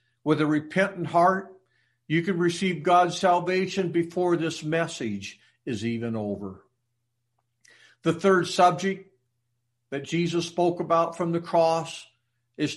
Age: 50-69